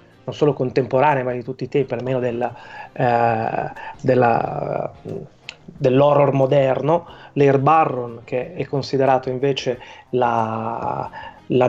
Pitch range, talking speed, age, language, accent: 125-145 Hz, 105 wpm, 20-39, Italian, native